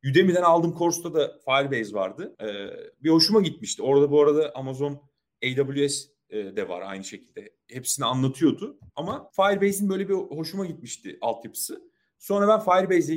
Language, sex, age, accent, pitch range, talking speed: Turkish, male, 40-59, native, 120-175 Hz, 135 wpm